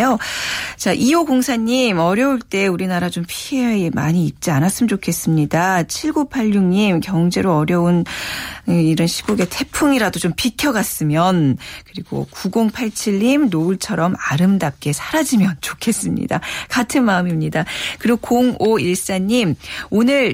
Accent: native